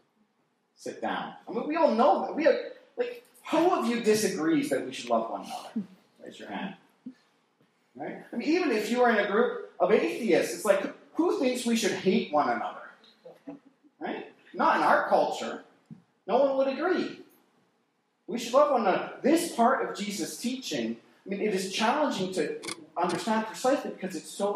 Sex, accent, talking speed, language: male, American, 185 wpm, English